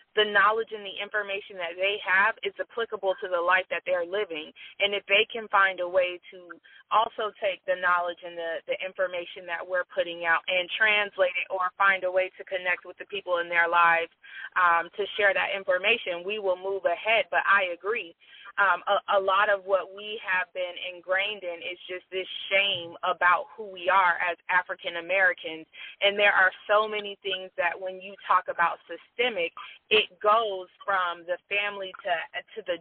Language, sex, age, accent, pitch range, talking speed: English, female, 30-49, American, 180-215 Hz, 190 wpm